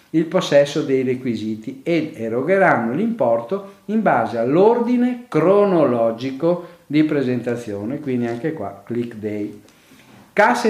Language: Italian